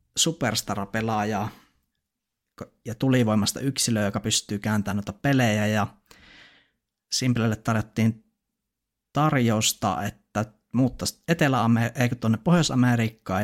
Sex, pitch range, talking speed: male, 105-125 Hz, 80 wpm